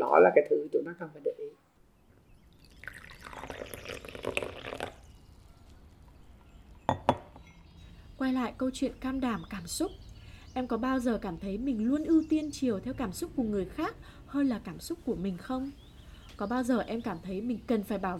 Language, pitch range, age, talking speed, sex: Vietnamese, 210-295 Hz, 20-39, 170 wpm, female